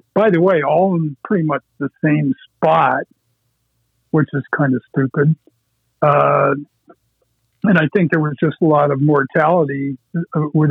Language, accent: English, American